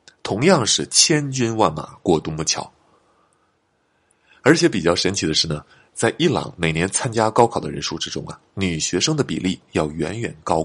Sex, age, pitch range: male, 30-49, 80-135 Hz